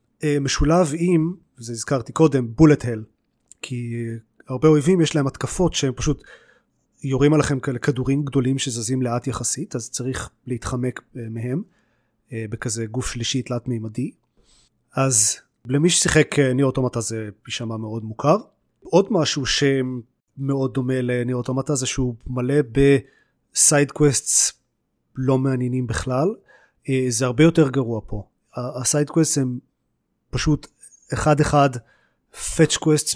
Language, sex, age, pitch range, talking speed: Hebrew, male, 30-49, 120-145 Hz, 115 wpm